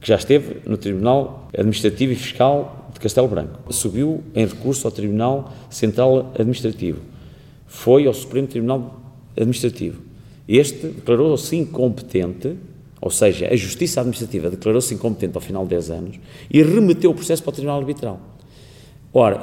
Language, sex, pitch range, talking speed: Portuguese, male, 100-125 Hz, 145 wpm